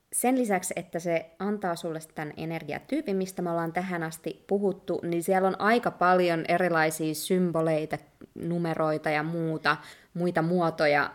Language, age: Finnish, 20-39